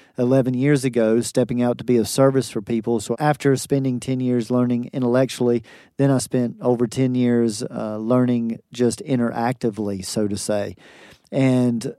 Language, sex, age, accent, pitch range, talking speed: English, male, 40-59, American, 120-130 Hz, 160 wpm